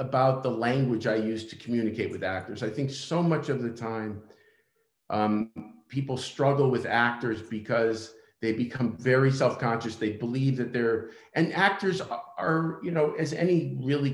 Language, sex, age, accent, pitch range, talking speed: English, male, 50-69, American, 110-135 Hz, 160 wpm